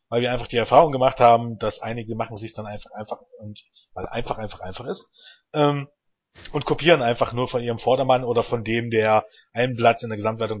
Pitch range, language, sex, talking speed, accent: 115-145 Hz, German, male, 210 wpm, German